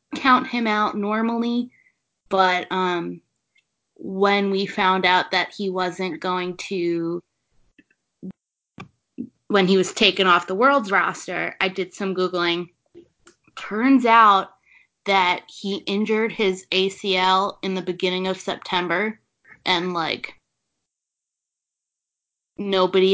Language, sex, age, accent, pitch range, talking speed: English, female, 20-39, American, 185-210 Hz, 110 wpm